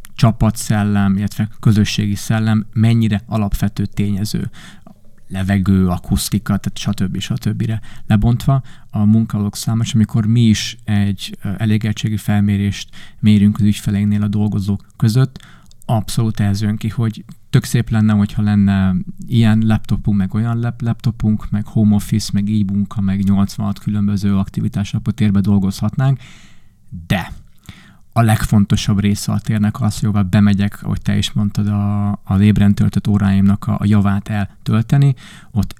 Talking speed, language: 130 wpm, Hungarian